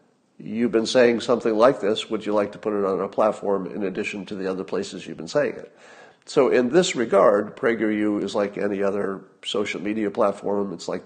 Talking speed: 210 wpm